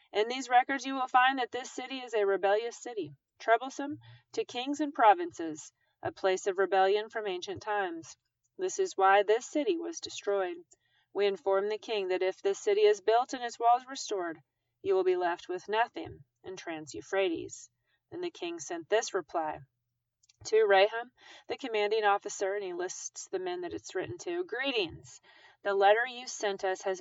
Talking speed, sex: 180 wpm, female